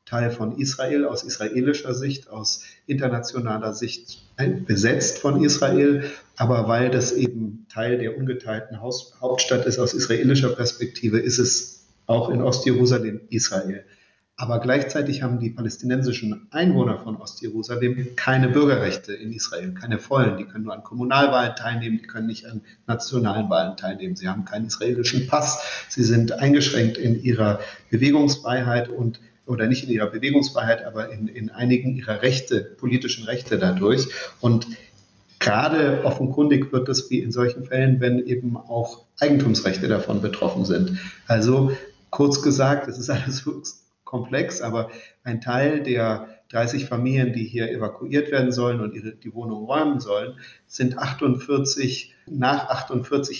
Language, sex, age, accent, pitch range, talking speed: German, male, 50-69, German, 115-135 Hz, 145 wpm